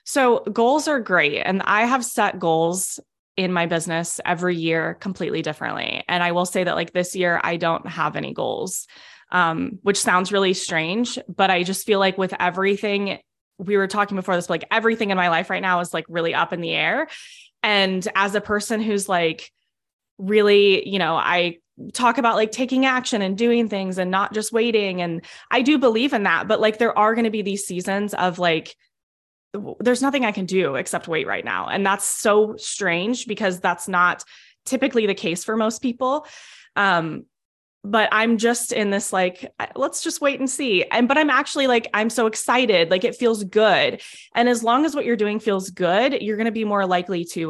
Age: 20-39